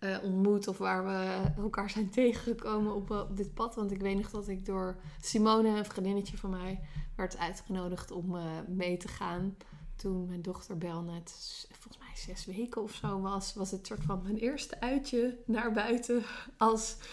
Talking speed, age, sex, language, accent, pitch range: 190 wpm, 20-39, female, Dutch, Dutch, 190-240 Hz